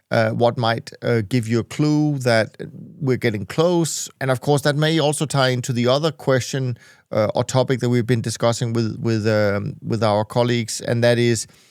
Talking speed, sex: 200 wpm, male